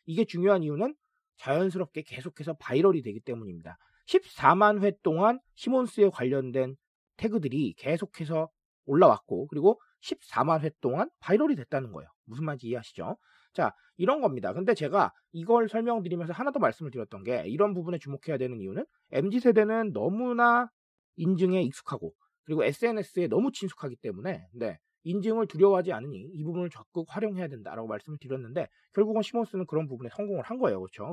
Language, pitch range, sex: Korean, 140-220 Hz, male